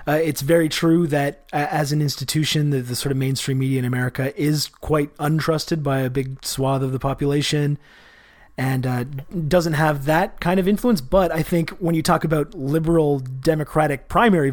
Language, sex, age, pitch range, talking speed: English, male, 30-49, 140-170 Hz, 185 wpm